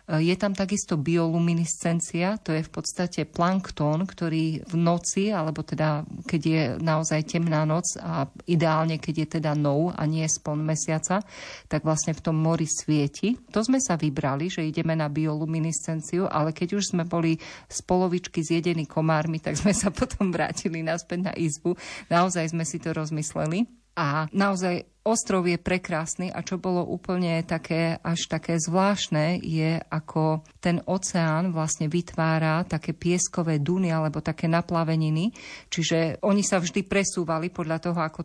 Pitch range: 160-180 Hz